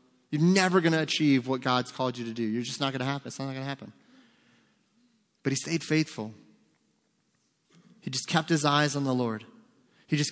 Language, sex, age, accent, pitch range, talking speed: English, male, 30-49, American, 130-155 Hz, 210 wpm